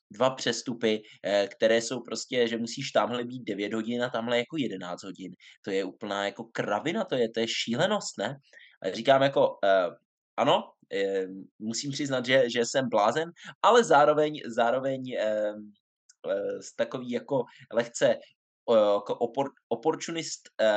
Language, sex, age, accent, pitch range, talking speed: Czech, male, 20-39, native, 105-140 Hz, 120 wpm